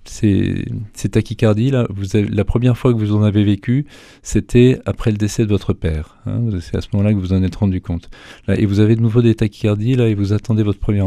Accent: French